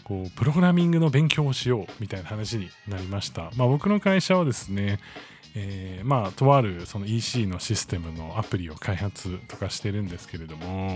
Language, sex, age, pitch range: Japanese, male, 20-39, 95-145 Hz